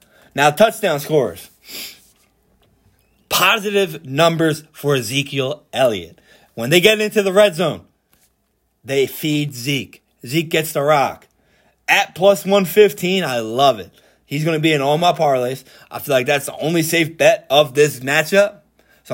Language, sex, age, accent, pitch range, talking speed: English, male, 20-39, American, 140-180 Hz, 150 wpm